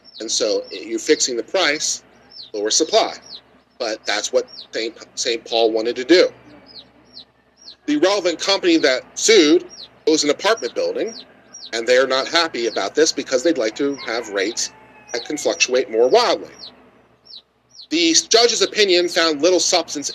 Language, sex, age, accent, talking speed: English, male, 40-59, American, 145 wpm